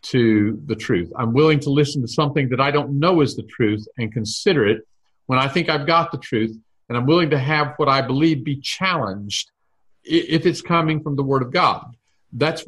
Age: 50-69